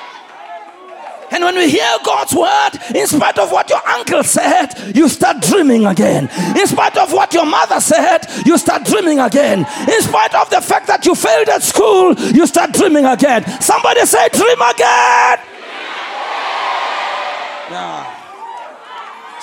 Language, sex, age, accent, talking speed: English, male, 40-59, South African, 140 wpm